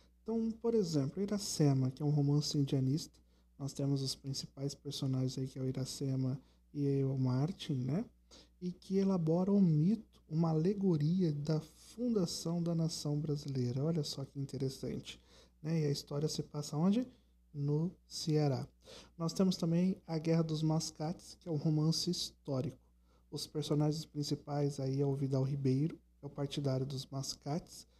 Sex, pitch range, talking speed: male, 135-165 Hz, 160 wpm